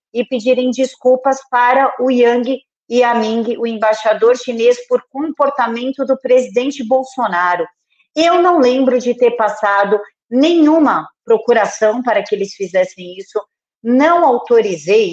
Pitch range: 210-255 Hz